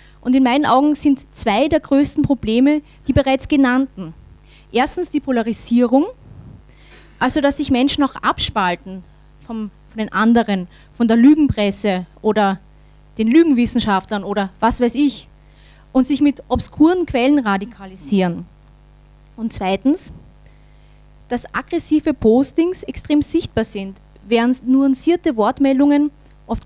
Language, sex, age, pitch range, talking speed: German, female, 30-49, 210-280 Hz, 120 wpm